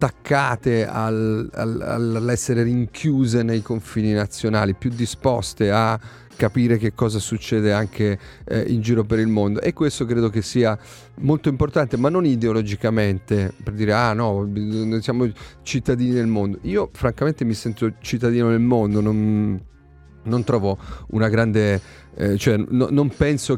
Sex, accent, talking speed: male, native, 135 wpm